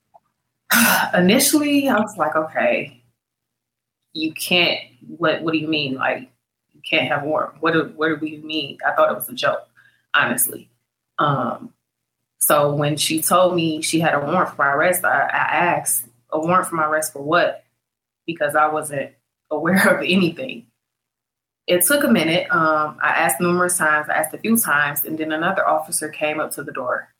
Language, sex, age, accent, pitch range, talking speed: English, female, 20-39, American, 150-175 Hz, 180 wpm